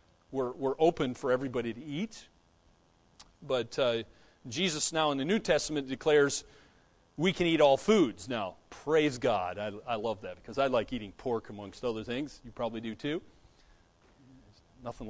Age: 40-59